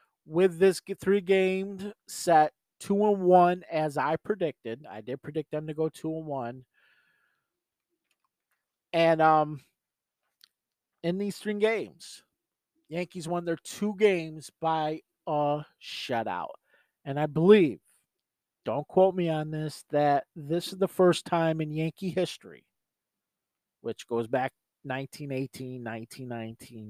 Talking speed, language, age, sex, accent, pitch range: 120 wpm, English, 40-59, male, American, 145-190 Hz